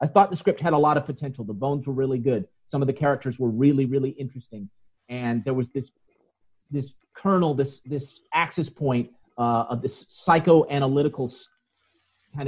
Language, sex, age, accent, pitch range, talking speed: English, male, 40-59, American, 120-150 Hz, 180 wpm